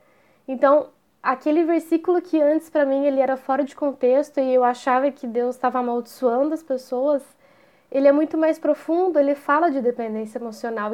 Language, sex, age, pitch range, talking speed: Portuguese, female, 10-29, 250-300 Hz, 165 wpm